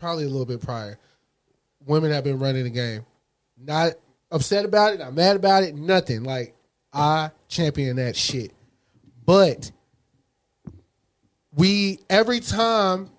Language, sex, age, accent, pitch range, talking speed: English, male, 20-39, American, 130-160 Hz, 130 wpm